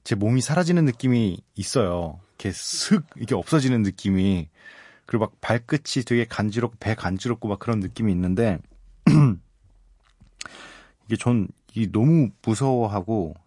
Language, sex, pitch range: Korean, male, 95-125 Hz